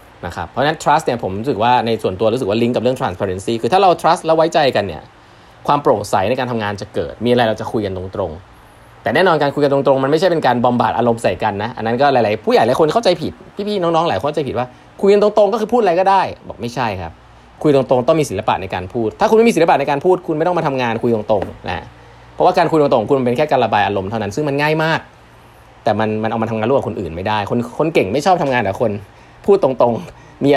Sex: male